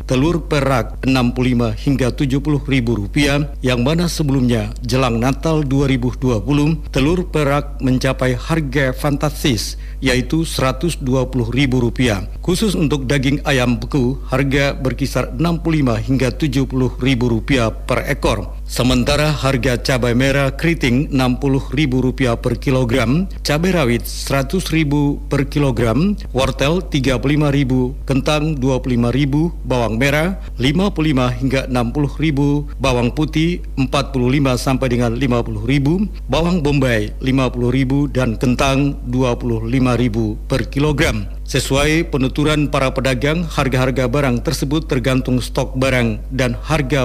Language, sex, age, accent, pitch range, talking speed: Indonesian, male, 50-69, native, 125-145 Hz, 115 wpm